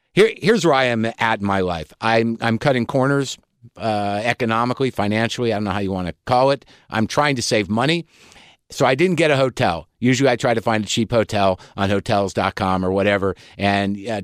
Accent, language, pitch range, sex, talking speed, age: American, English, 110-150 Hz, male, 210 wpm, 50-69